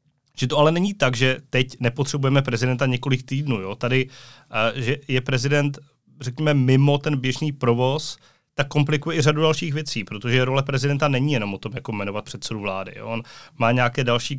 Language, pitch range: Czech, 120-145 Hz